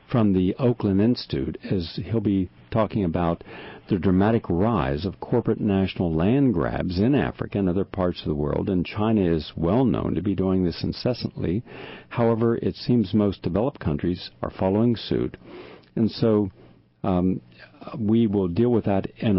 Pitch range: 90-115 Hz